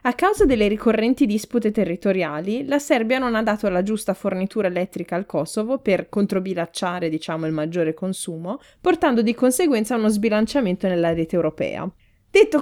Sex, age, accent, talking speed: female, 20-39, native, 150 wpm